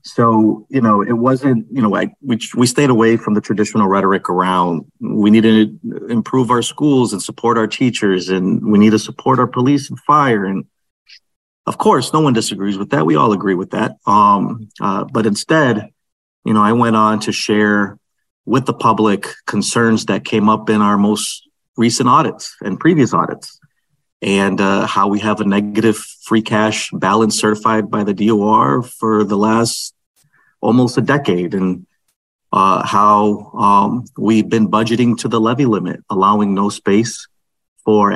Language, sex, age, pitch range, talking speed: English, male, 40-59, 105-125 Hz, 175 wpm